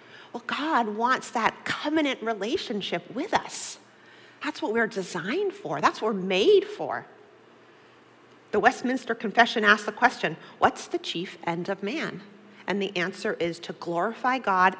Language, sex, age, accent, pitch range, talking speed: English, female, 40-59, American, 185-230 Hz, 150 wpm